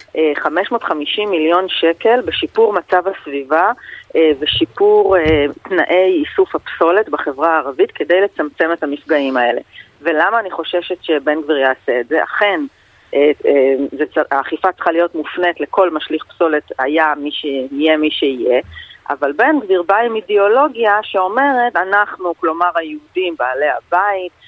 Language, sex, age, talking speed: Hebrew, female, 30-49, 125 wpm